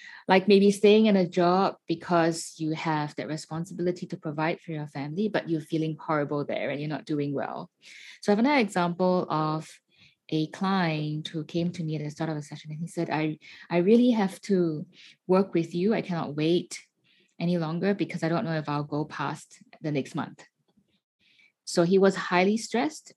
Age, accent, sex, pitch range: 20-39, Malaysian, female, 155-195 Hz